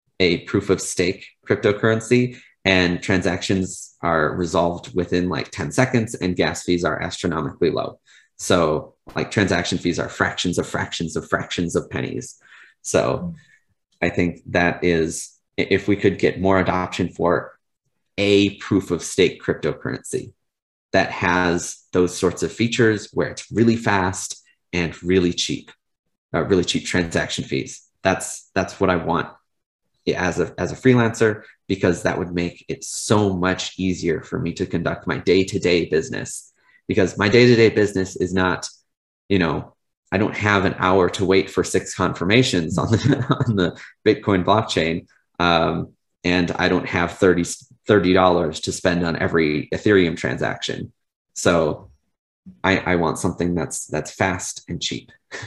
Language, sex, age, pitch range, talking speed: English, male, 30-49, 90-105 Hz, 155 wpm